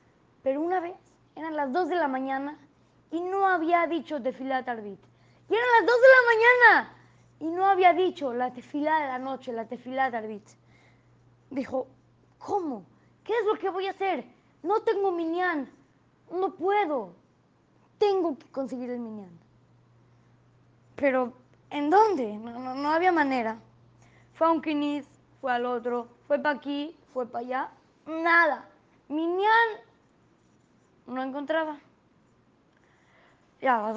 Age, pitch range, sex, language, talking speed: 20-39, 245-350 Hz, female, Spanish, 145 wpm